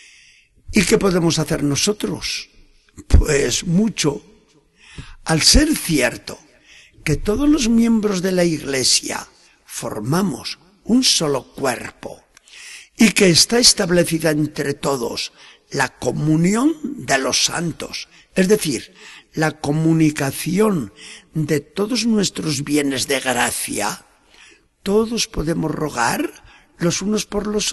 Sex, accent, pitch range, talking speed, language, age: male, Spanish, 145-215 Hz, 105 wpm, Spanish, 60-79